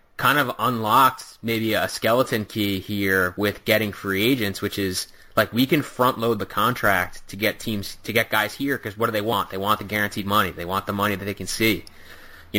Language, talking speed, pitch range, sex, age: English, 225 wpm, 95-115 Hz, male, 20-39